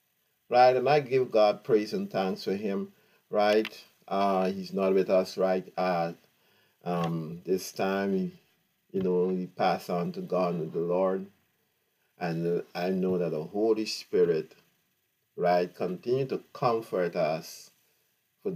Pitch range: 90-115 Hz